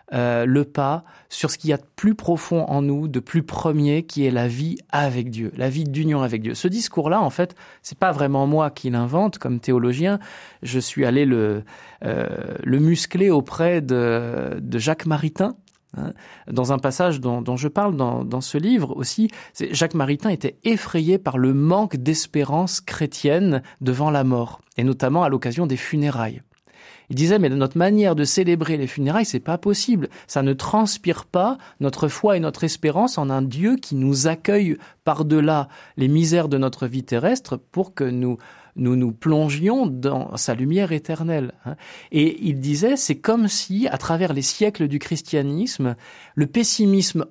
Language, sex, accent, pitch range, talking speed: French, male, French, 135-190 Hz, 175 wpm